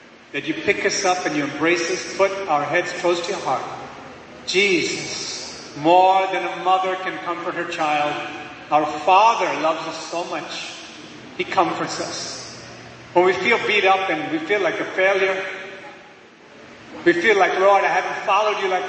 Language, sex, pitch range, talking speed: English, male, 150-190 Hz, 170 wpm